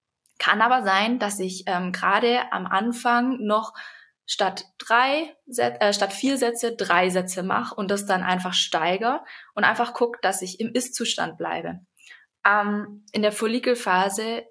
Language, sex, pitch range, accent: German, female, 185-225 Hz, German